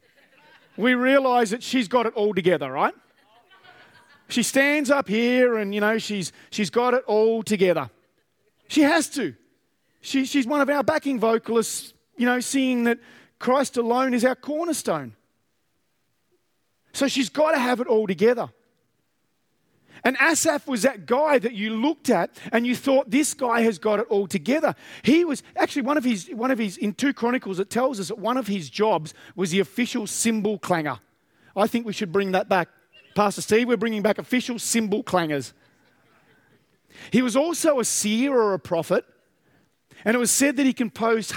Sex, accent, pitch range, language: male, Australian, 200-260 Hz, English